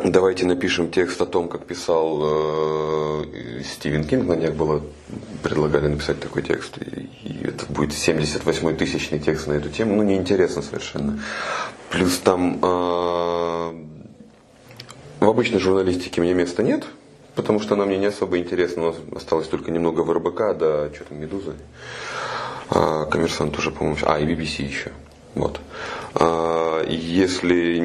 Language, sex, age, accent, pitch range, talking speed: Russian, male, 30-49, native, 75-95 Hz, 145 wpm